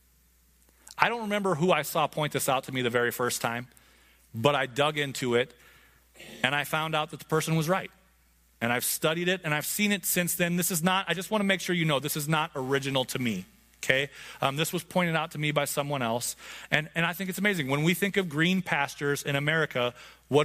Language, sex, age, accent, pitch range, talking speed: English, male, 30-49, American, 130-175 Hz, 240 wpm